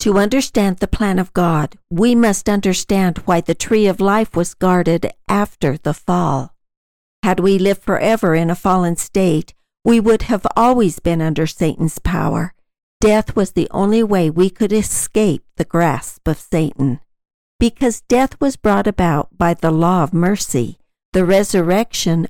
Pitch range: 170-220 Hz